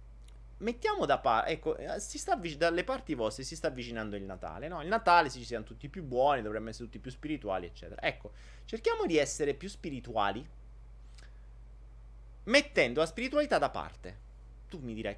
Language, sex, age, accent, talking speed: Italian, male, 30-49, native, 180 wpm